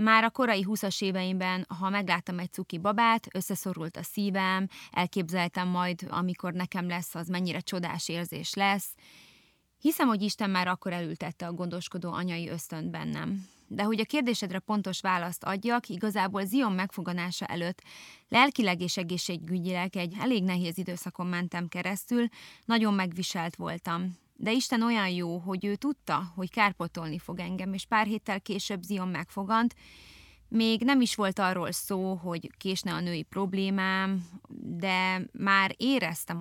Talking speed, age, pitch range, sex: 145 wpm, 20-39, 180-205 Hz, female